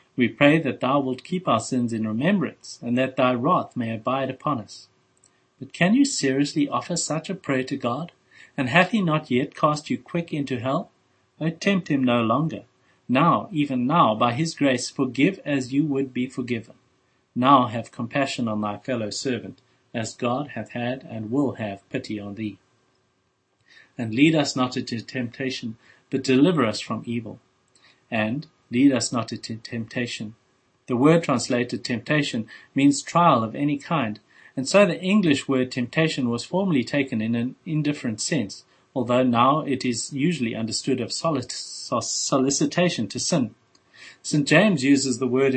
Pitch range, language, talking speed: 120-150 Hz, English, 165 wpm